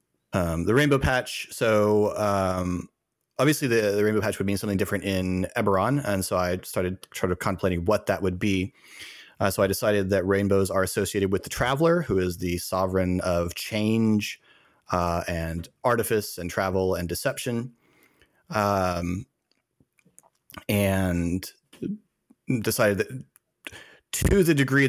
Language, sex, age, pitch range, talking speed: English, male, 30-49, 90-105 Hz, 140 wpm